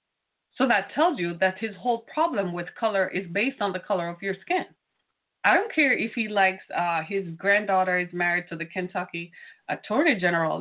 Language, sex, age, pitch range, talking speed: English, female, 30-49, 190-260 Hz, 190 wpm